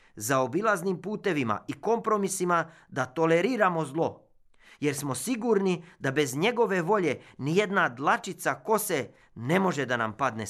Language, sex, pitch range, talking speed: Croatian, male, 130-185 Hz, 135 wpm